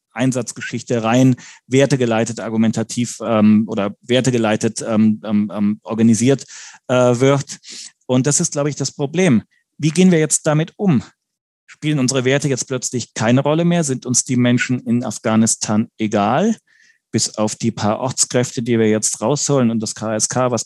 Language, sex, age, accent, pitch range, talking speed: German, male, 30-49, German, 115-135 Hz, 155 wpm